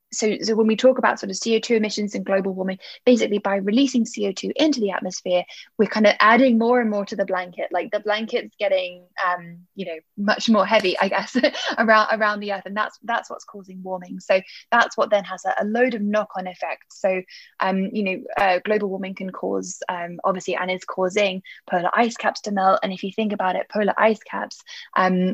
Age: 10-29